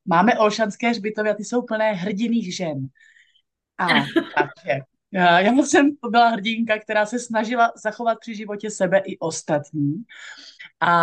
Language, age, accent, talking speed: Czech, 30-49, native, 135 wpm